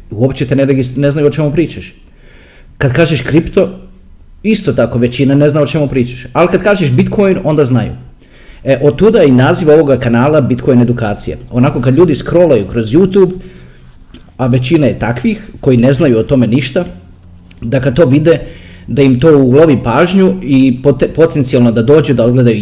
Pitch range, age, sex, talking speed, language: 120-150 Hz, 30-49, male, 170 wpm, Croatian